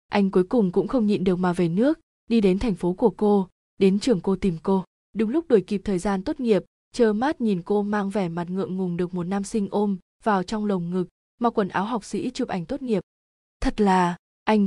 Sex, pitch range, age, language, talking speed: female, 190-225 Hz, 20-39, Vietnamese, 240 wpm